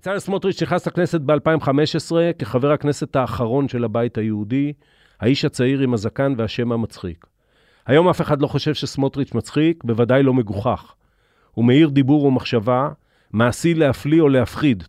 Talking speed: 140 wpm